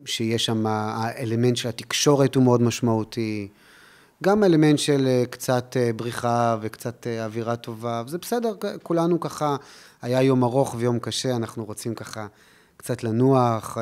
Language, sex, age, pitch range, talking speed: Hebrew, male, 30-49, 110-140 Hz, 130 wpm